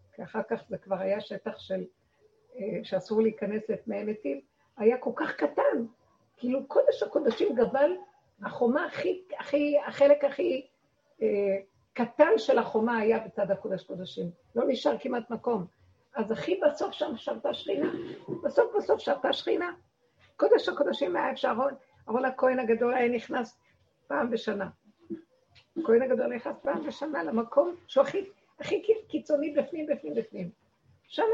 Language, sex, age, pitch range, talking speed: Hebrew, female, 50-69, 200-285 Hz, 130 wpm